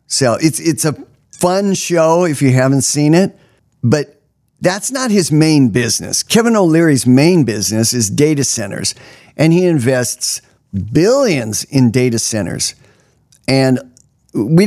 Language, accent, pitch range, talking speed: English, American, 120-165 Hz, 135 wpm